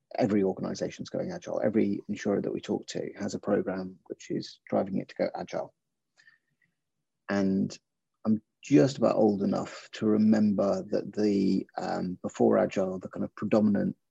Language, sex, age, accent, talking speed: English, male, 30-49, British, 160 wpm